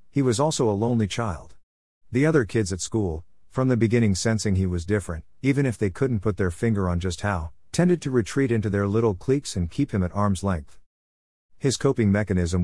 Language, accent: English, American